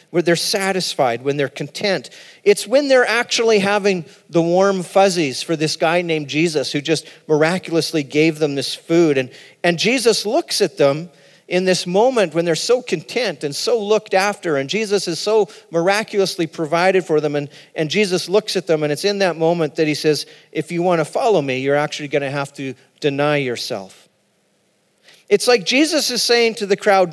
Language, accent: English, American